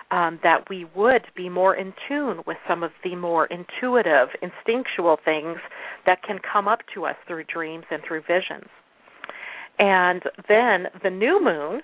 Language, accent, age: English, American, 40-59